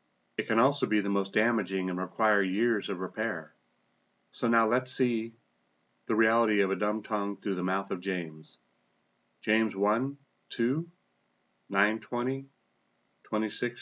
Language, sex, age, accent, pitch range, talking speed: English, male, 40-59, American, 105-130 Hz, 145 wpm